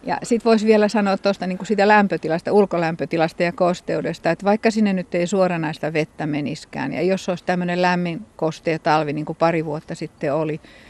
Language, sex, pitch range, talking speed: Finnish, female, 155-190 Hz, 170 wpm